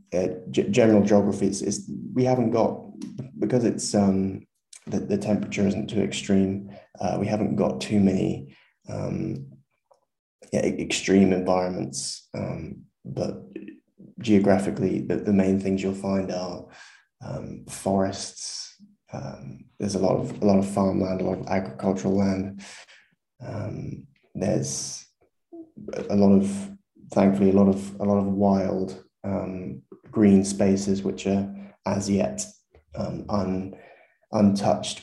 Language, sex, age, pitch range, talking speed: Spanish, male, 20-39, 90-100 Hz, 130 wpm